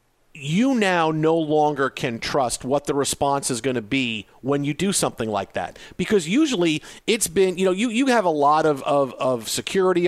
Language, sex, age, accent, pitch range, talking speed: English, male, 40-59, American, 145-195 Hz, 200 wpm